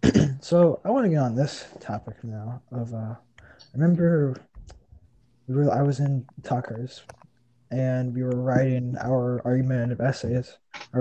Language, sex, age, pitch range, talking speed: English, male, 20-39, 120-150 Hz, 155 wpm